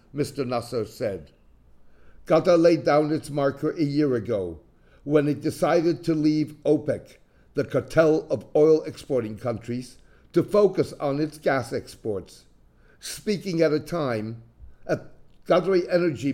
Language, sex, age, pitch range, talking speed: English, male, 50-69, 120-165 Hz, 130 wpm